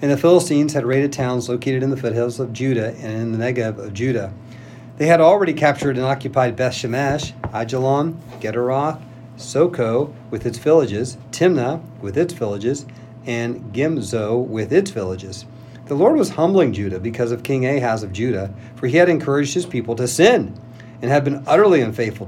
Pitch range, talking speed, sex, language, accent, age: 115-140 Hz, 175 wpm, male, English, American, 50-69